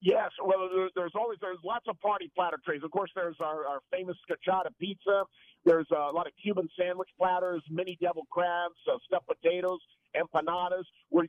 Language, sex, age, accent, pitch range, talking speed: English, male, 50-69, American, 155-185 Hz, 175 wpm